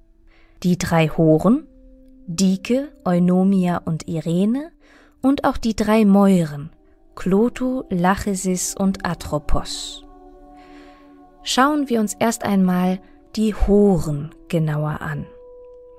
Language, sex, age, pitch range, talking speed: German, female, 20-39, 170-220 Hz, 95 wpm